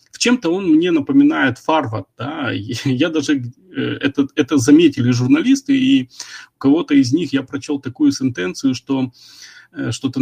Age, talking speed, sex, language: 30-49, 155 wpm, male, Russian